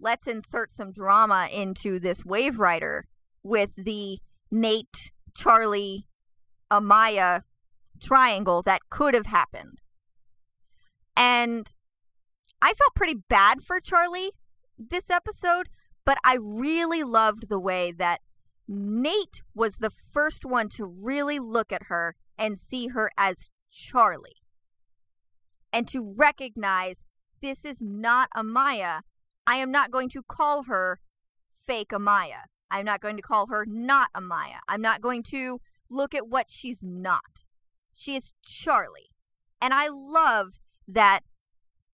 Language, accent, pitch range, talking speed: English, American, 185-255 Hz, 125 wpm